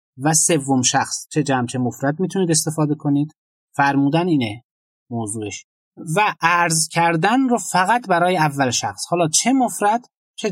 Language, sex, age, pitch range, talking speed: Persian, male, 30-49, 140-180 Hz, 145 wpm